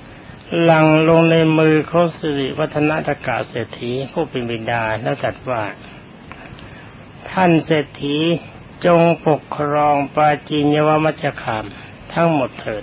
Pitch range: 130-160 Hz